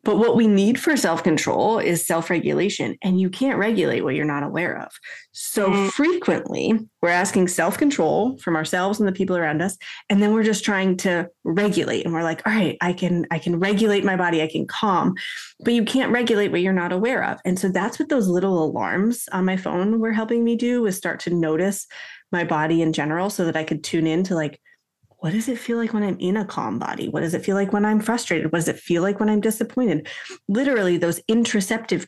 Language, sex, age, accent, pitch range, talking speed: English, female, 30-49, American, 175-210 Hz, 225 wpm